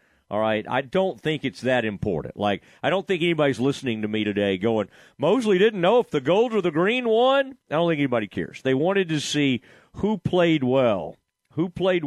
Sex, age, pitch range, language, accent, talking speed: male, 40-59, 125-195 Hz, English, American, 210 wpm